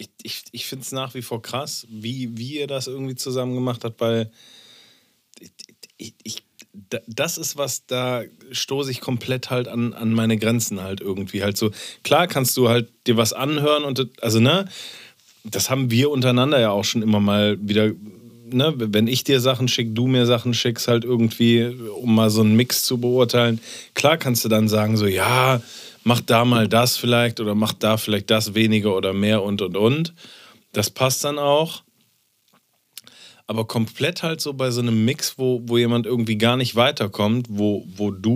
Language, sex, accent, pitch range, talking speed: German, male, German, 110-125 Hz, 190 wpm